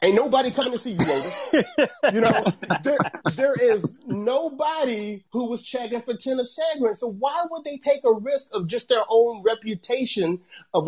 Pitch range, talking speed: 170-245 Hz, 175 wpm